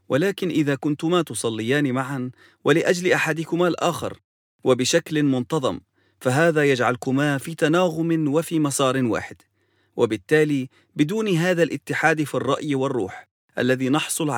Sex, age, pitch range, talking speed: male, 40-59, 125-160 Hz, 110 wpm